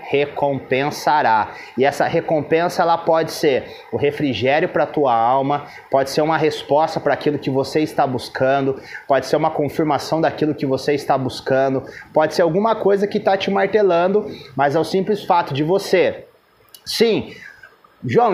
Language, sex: Portuguese, male